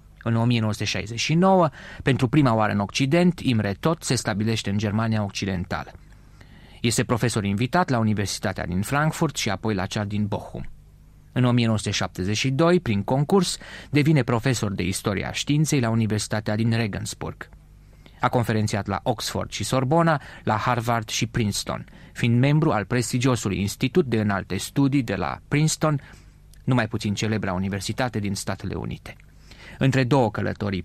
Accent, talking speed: native, 140 wpm